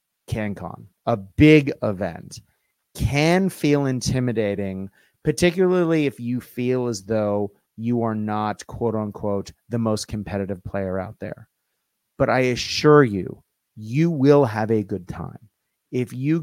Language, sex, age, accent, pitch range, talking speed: English, male, 30-49, American, 100-135 Hz, 130 wpm